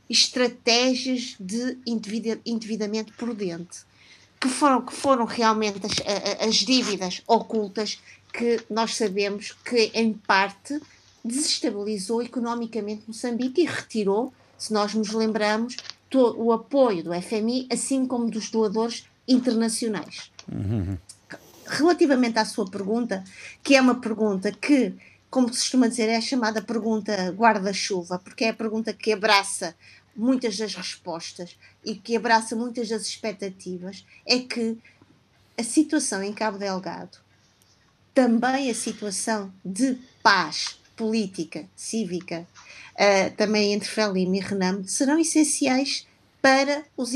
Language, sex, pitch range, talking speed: Portuguese, female, 205-245 Hz, 120 wpm